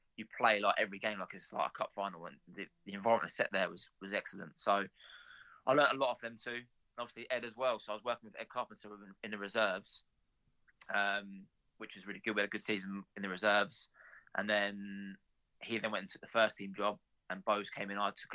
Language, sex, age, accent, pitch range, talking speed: English, male, 20-39, British, 100-110 Hz, 235 wpm